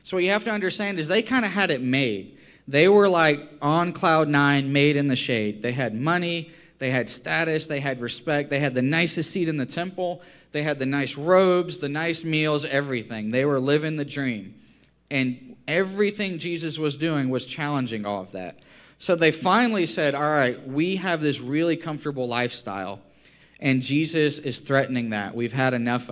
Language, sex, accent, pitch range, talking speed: English, male, American, 130-170 Hz, 195 wpm